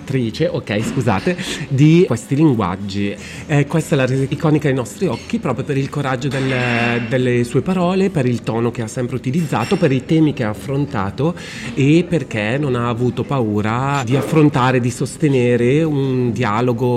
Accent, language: native, Italian